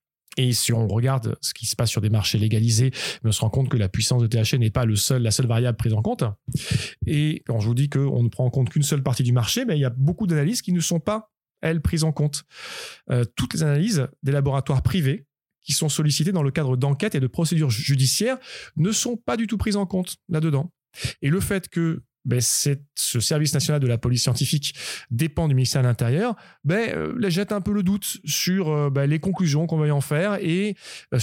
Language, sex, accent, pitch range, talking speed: French, male, French, 125-160 Hz, 235 wpm